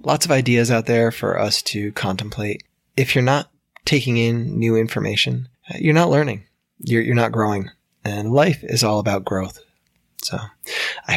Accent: American